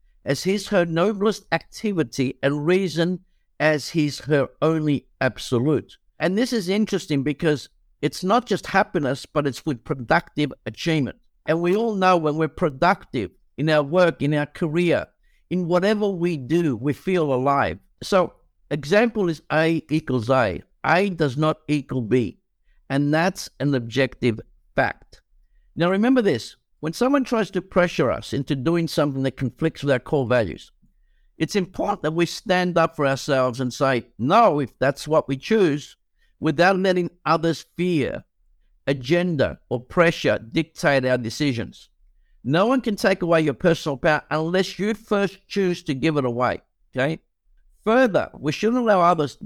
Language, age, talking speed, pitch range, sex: English, 60-79, 155 wpm, 140-180 Hz, male